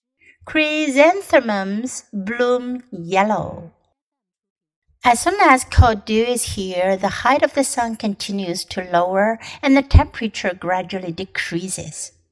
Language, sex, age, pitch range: Chinese, female, 60-79, 195-260 Hz